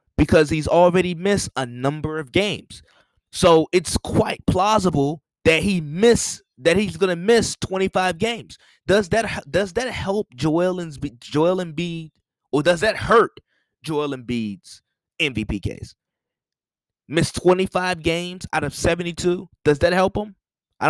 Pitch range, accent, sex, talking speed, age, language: 125-175 Hz, American, male, 150 wpm, 20-39, English